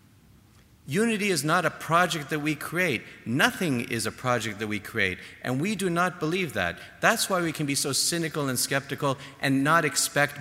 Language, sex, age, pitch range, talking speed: English, male, 50-69, 105-145 Hz, 190 wpm